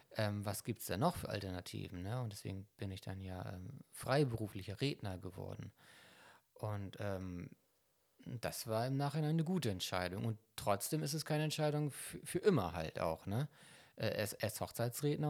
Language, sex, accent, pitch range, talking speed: German, male, German, 100-155 Hz, 175 wpm